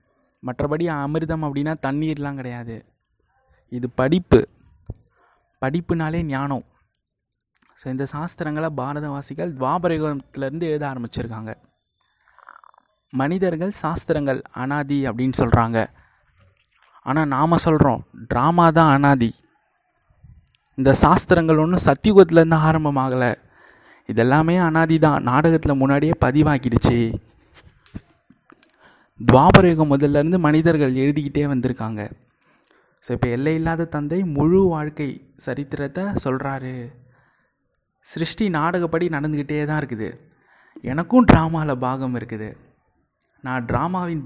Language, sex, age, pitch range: Tamil, male, 20-39, 130-165 Hz